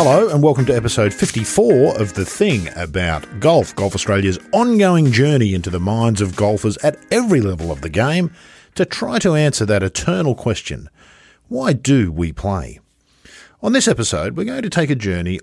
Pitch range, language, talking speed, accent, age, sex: 90-145 Hz, English, 180 wpm, Australian, 50-69, male